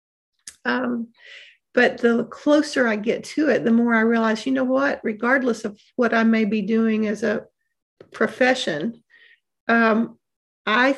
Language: English